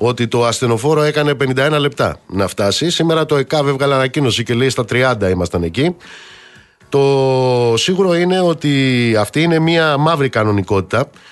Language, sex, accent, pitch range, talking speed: Greek, male, native, 115-150 Hz, 150 wpm